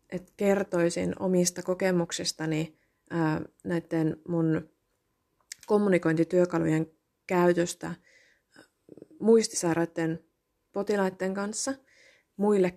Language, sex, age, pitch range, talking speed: Finnish, female, 20-39, 160-195 Hz, 55 wpm